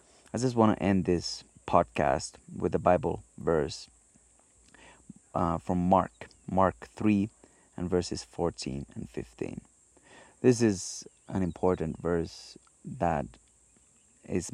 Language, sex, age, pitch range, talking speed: Finnish, male, 30-49, 90-110 Hz, 115 wpm